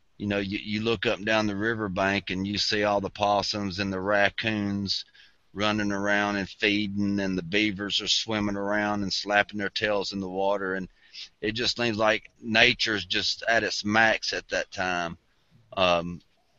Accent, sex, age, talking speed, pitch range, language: American, male, 30-49, 185 wpm, 95-105 Hz, English